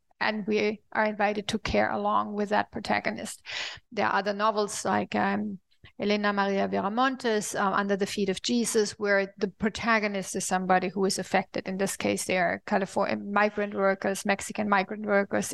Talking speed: 160 wpm